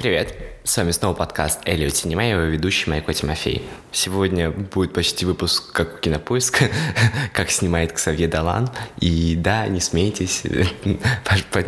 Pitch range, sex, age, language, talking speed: 80-100 Hz, male, 20-39, Russian, 125 wpm